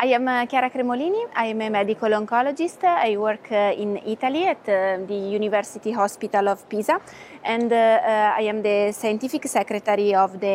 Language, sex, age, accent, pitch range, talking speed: Portuguese, female, 20-39, Italian, 200-245 Hz, 155 wpm